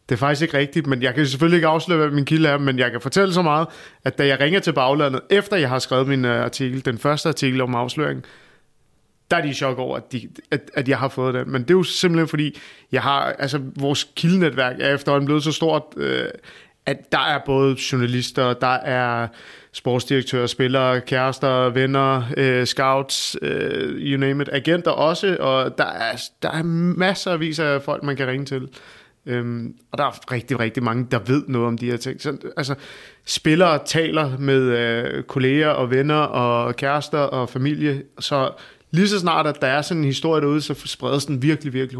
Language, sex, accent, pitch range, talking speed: Danish, male, native, 130-150 Hz, 200 wpm